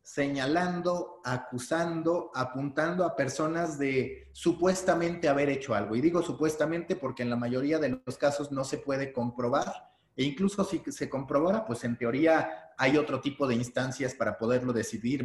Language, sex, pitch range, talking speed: Spanish, male, 130-170 Hz, 155 wpm